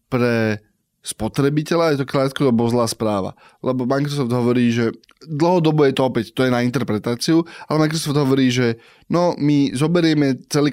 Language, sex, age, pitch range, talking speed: Slovak, male, 20-39, 120-145 Hz, 150 wpm